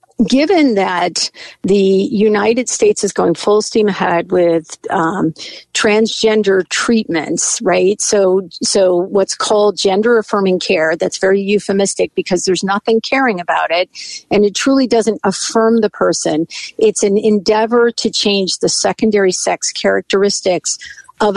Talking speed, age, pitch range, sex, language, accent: 135 wpm, 50-69, 190-225 Hz, female, English, American